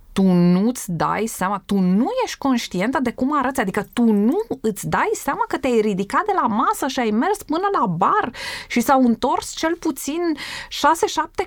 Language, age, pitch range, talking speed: Romanian, 20-39, 180-275 Hz, 185 wpm